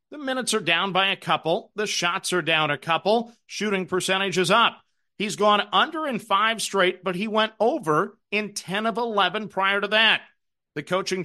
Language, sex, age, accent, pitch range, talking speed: English, male, 50-69, American, 170-215 Hz, 185 wpm